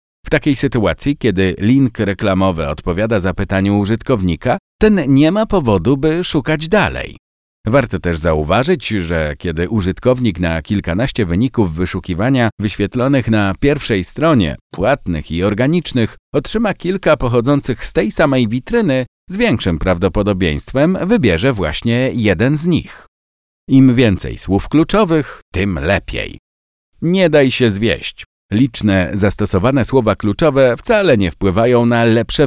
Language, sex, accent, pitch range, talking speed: Polish, male, native, 95-145 Hz, 125 wpm